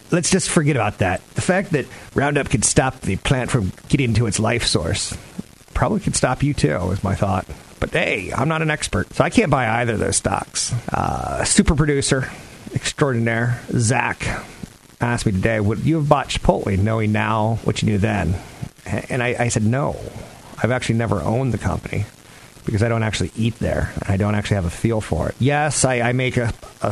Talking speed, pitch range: 205 wpm, 100-125 Hz